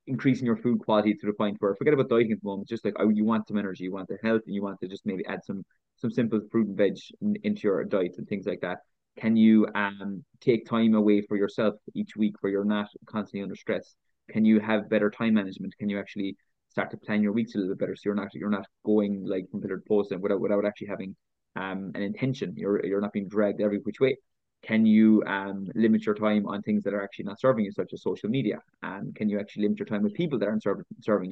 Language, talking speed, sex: English, 260 wpm, male